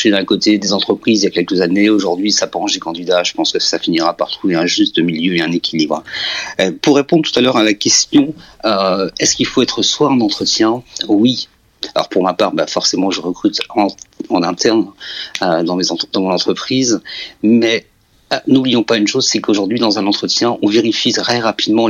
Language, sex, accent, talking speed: French, male, French, 210 wpm